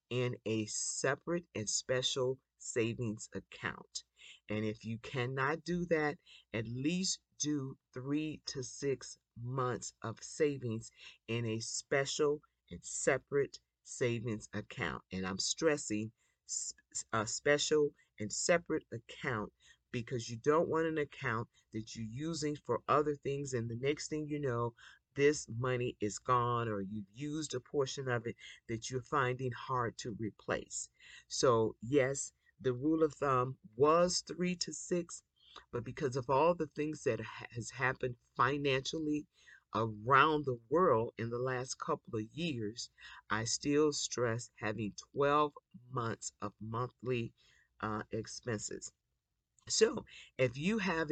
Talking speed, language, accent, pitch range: 135 wpm, English, American, 115-150 Hz